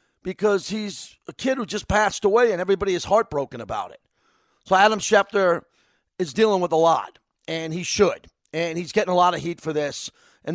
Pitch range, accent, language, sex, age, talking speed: 160-200 Hz, American, English, male, 40-59, 200 wpm